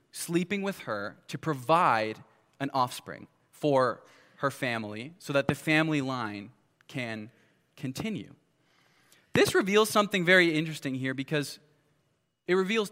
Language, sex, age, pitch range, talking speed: English, male, 20-39, 140-190 Hz, 120 wpm